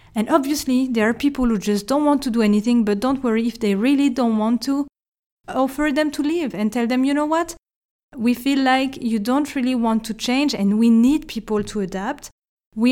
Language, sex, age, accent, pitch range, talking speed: English, female, 30-49, French, 215-265 Hz, 220 wpm